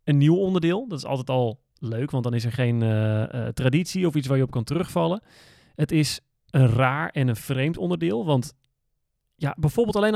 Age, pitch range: 30-49, 130-180 Hz